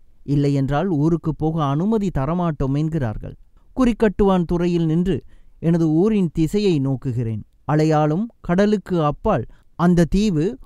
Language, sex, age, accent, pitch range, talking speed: Tamil, male, 30-49, native, 140-200 Hz, 100 wpm